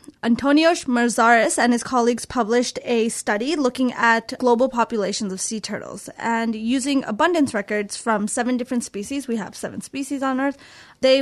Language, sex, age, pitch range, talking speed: English, female, 20-39, 220-255 Hz, 160 wpm